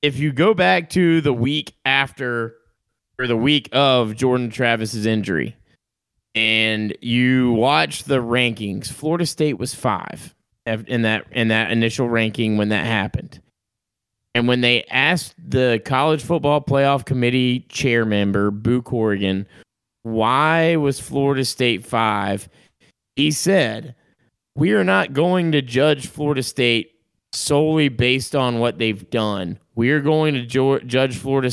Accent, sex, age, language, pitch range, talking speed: American, male, 30-49, English, 115-150 Hz, 140 wpm